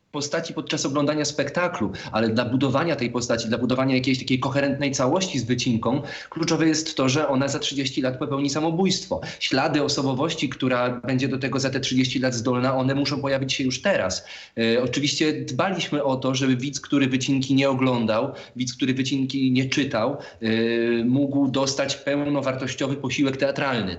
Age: 30-49